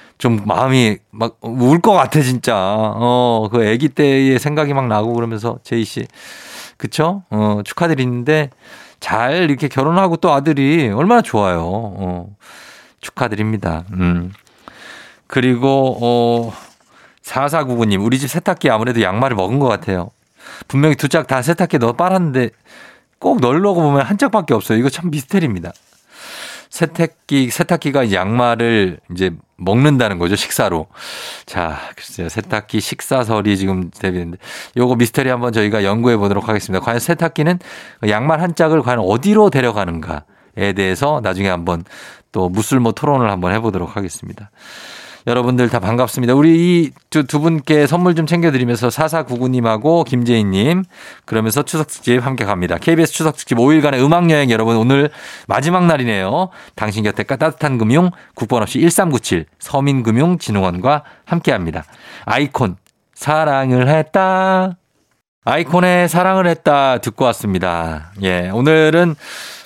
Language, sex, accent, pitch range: Korean, male, native, 110-155 Hz